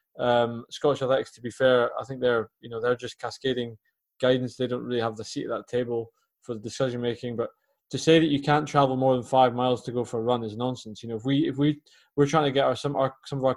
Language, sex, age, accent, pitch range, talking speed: English, male, 20-39, British, 120-140 Hz, 285 wpm